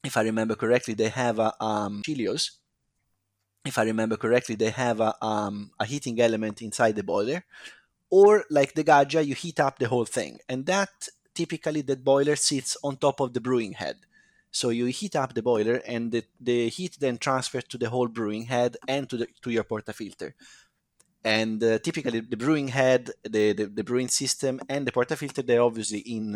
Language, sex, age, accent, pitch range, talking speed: English, male, 30-49, Italian, 115-145 Hz, 195 wpm